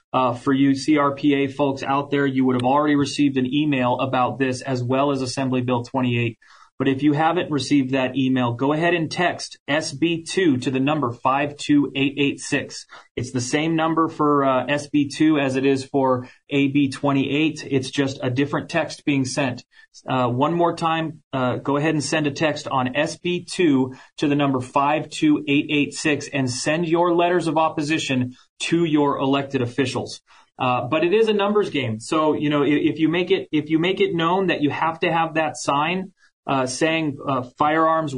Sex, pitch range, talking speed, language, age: male, 135-160 Hz, 180 wpm, English, 30-49